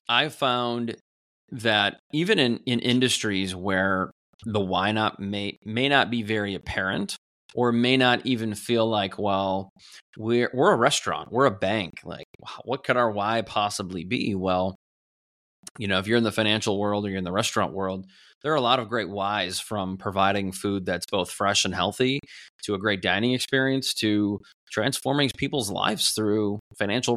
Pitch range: 100-125 Hz